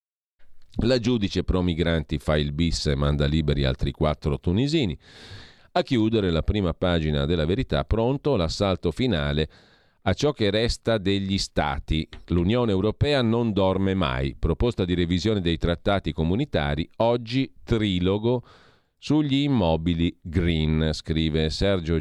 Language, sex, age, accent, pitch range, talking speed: Italian, male, 40-59, native, 80-105 Hz, 130 wpm